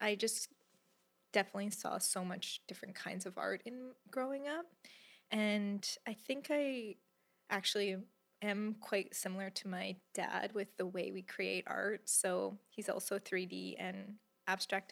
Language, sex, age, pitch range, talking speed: English, female, 20-39, 190-220 Hz, 145 wpm